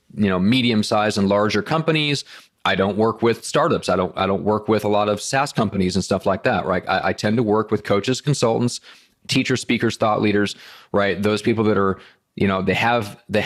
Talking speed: 225 wpm